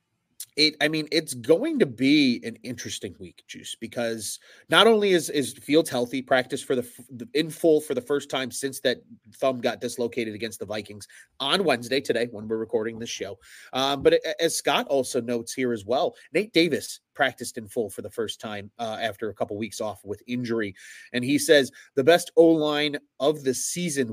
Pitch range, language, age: 115-150 Hz, English, 30-49